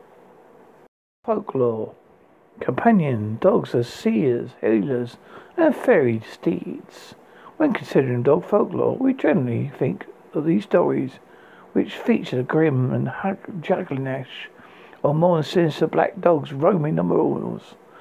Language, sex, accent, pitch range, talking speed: English, male, British, 135-200 Hz, 115 wpm